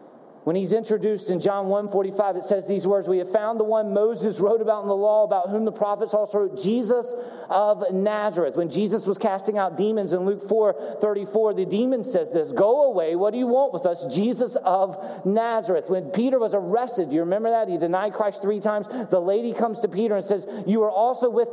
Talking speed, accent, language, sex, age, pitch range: 225 wpm, American, English, male, 40-59, 195-235 Hz